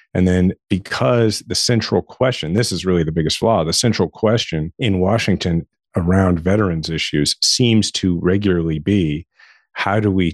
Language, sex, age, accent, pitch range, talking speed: English, male, 40-59, American, 85-100 Hz, 155 wpm